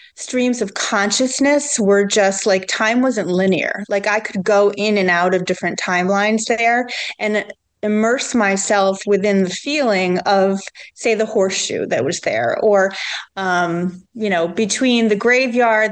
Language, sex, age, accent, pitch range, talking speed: English, female, 30-49, American, 190-220 Hz, 150 wpm